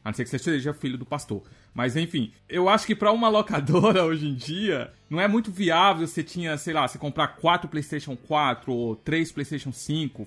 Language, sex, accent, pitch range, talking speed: Portuguese, male, Brazilian, 120-185 Hz, 215 wpm